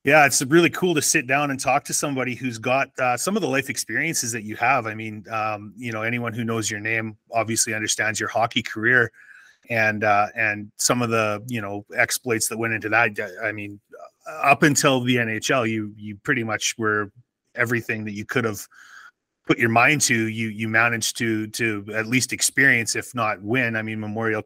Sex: male